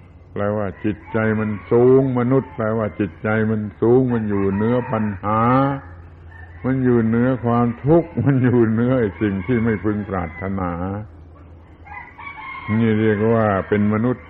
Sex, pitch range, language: male, 90-115 Hz, Thai